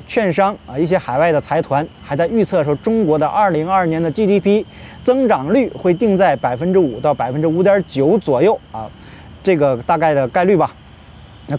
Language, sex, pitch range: Chinese, male, 135-195 Hz